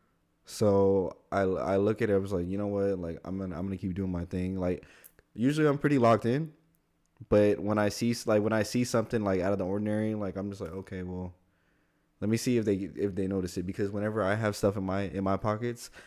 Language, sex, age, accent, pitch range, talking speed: English, male, 20-39, American, 95-125 Hz, 245 wpm